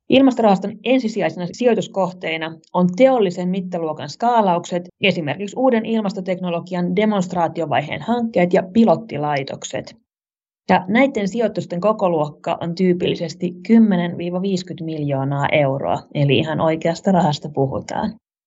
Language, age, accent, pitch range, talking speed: Finnish, 30-49, native, 165-205 Hz, 90 wpm